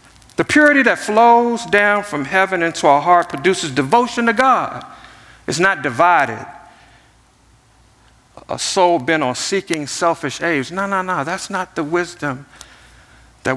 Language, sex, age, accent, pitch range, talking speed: English, male, 50-69, American, 165-225 Hz, 140 wpm